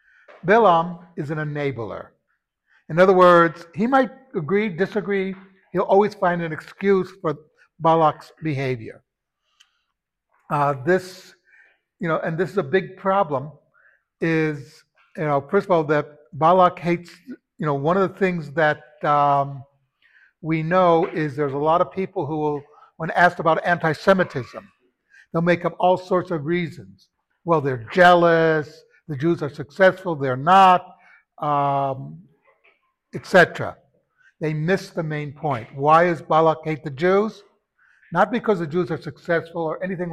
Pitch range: 150-185 Hz